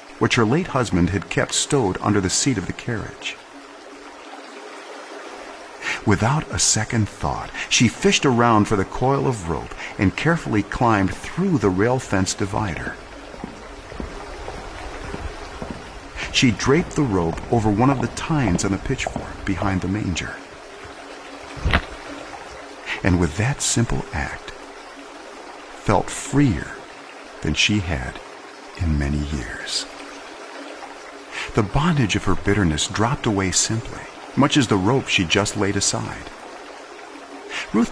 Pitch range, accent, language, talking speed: 95-125 Hz, American, English, 125 wpm